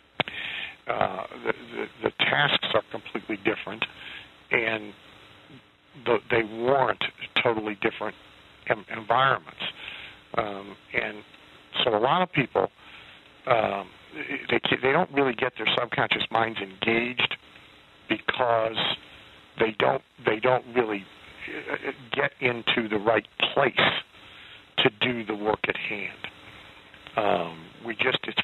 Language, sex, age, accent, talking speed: English, male, 50-69, American, 115 wpm